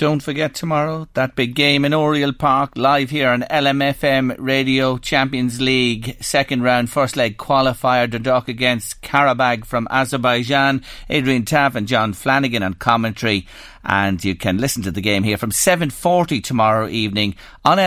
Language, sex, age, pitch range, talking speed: English, male, 40-59, 110-145 Hz, 155 wpm